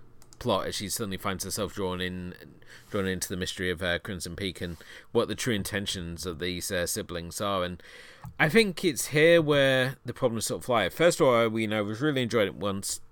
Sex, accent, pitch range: male, British, 90-115 Hz